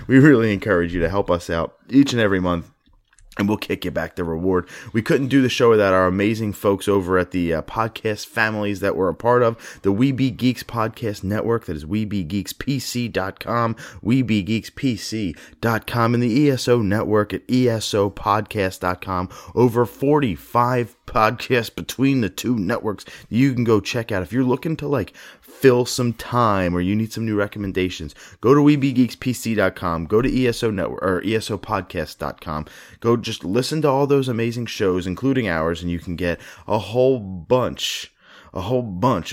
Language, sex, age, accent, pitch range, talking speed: English, male, 30-49, American, 95-125 Hz, 170 wpm